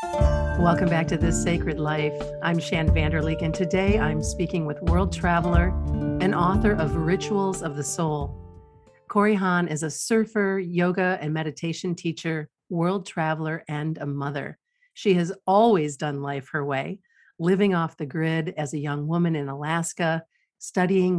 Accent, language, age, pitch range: American, English, 50-69, 150-190 Hz